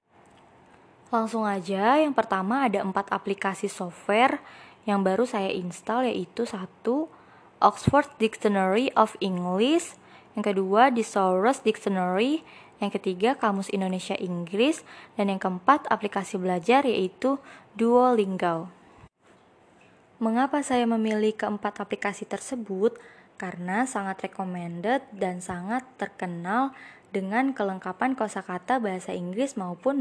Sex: female